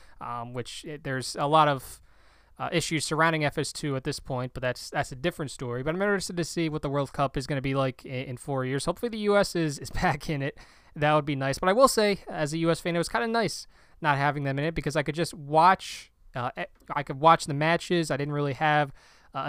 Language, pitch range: English, 140-170 Hz